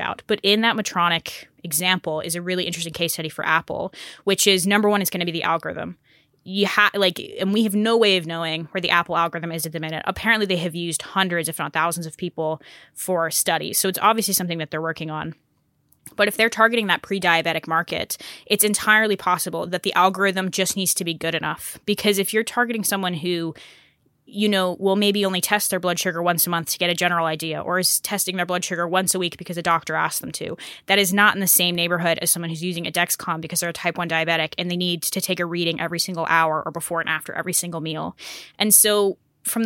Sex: female